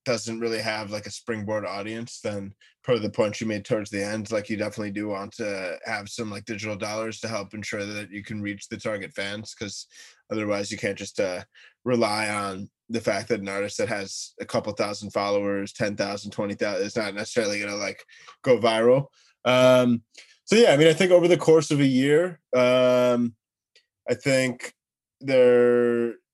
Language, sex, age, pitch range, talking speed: English, male, 20-39, 105-125 Hz, 190 wpm